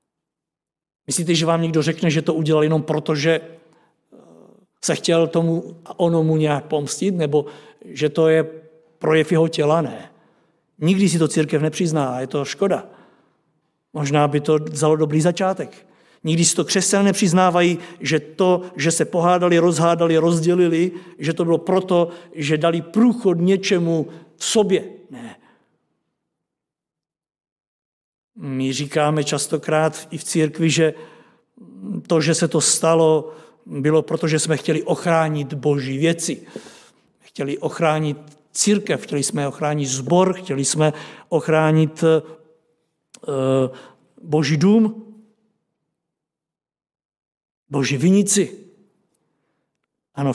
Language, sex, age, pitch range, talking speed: Czech, male, 50-69, 150-175 Hz, 115 wpm